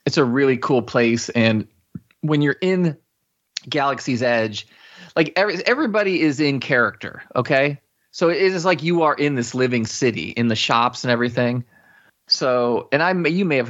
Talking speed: 170 wpm